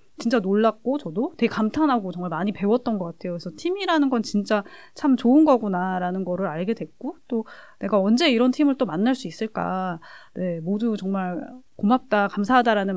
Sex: female